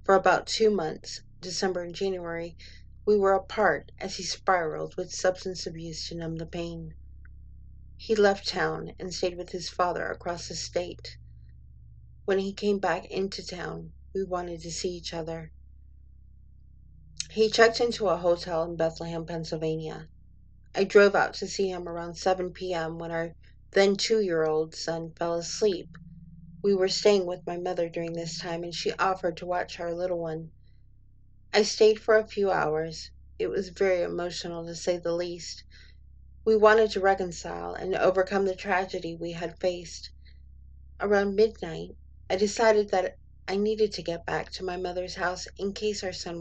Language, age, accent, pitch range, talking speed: English, 40-59, American, 115-190 Hz, 165 wpm